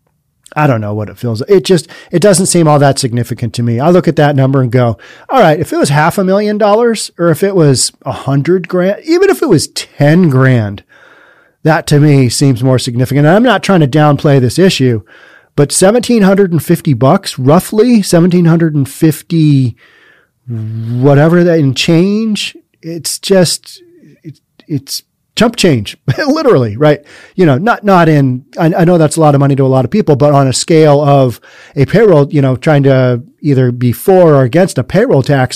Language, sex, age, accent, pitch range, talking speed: English, male, 40-59, American, 135-185 Hz, 190 wpm